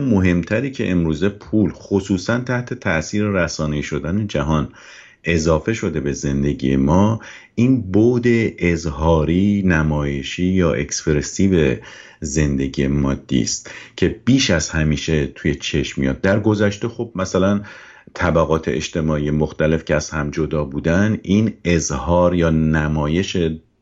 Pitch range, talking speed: 75-95 Hz, 120 wpm